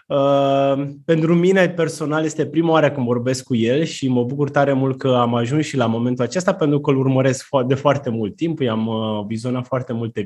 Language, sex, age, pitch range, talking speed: Romanian, male, 20-39, 120-155 Hz, 210 wpm